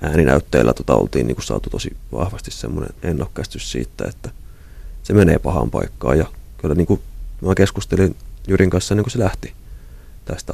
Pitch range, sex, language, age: 80-95 Hz, male, Finnish, 30-49